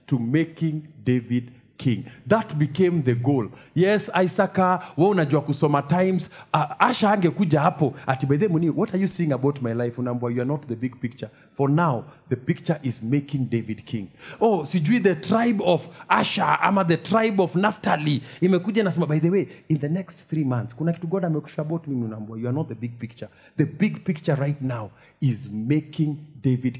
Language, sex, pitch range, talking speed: English, male, 125-185 Hz, 145 wpm